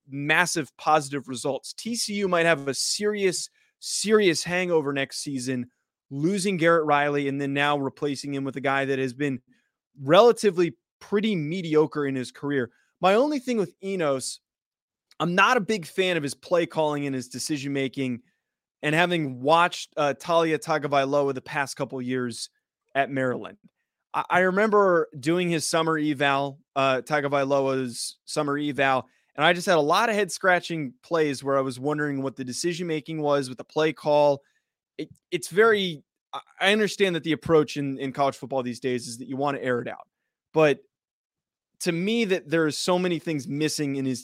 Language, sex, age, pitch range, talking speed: English, male, 20-39, 135-170 Hz, 170 wpm